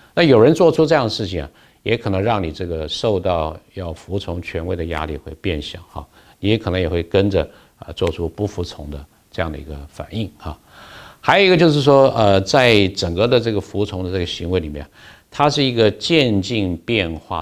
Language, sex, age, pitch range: Chinese, male, 50-69, 85-115 Hz